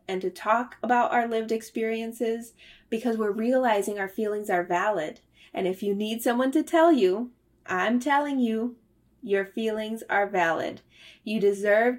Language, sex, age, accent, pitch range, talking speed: English, female, 20-39, American, 195-245 Hz, 155 wpm